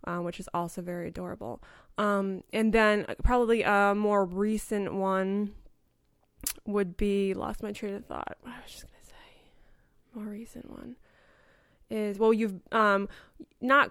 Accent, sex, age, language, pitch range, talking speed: American, female, 20-39, English, 200-240 Hz, 150 wpm